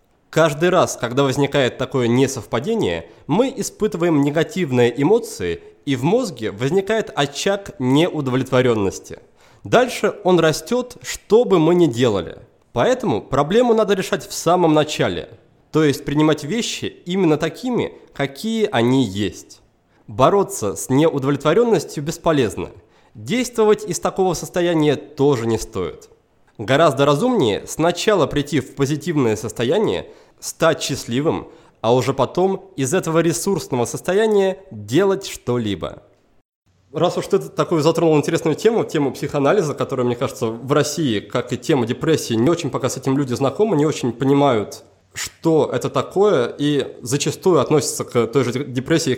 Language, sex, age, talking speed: Russian, male, 20-39, 130 wpm